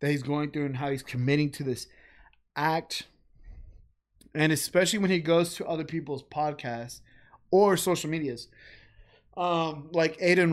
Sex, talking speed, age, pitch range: male, 150 wpm, 20-39, 130-165 Hz